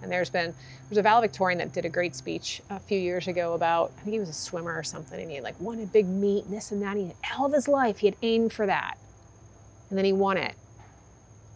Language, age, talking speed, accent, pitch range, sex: English, 30-49, 275 wpm, American, 130-195 Hz, female